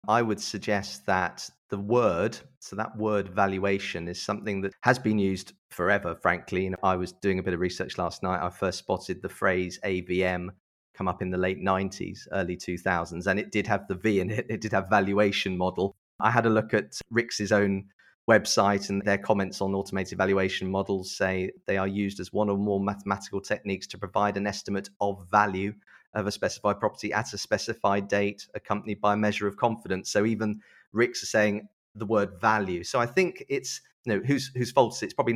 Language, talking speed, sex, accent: English, 205 wpm, male, British